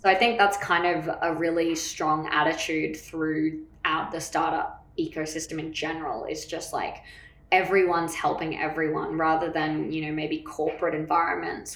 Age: 20-39